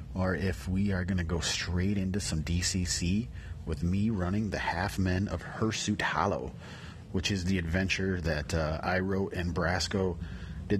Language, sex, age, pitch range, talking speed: English, male, 30-49, 85-110 Hz, 170 wpm